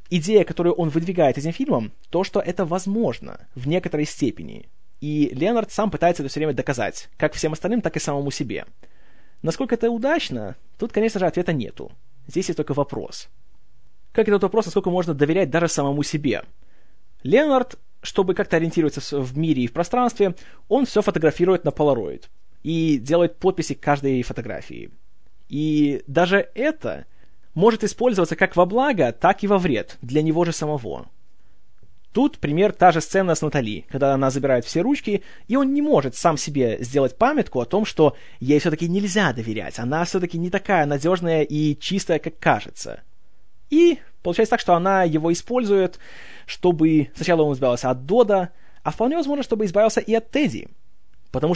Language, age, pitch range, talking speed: Russian, 20-39, 145-205 Hz, 165 wpm